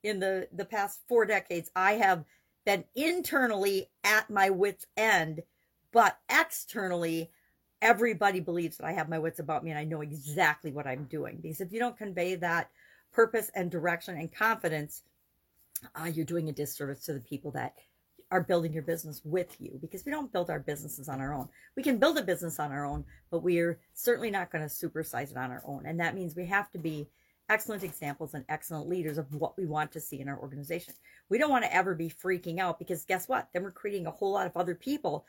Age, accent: 50-69, American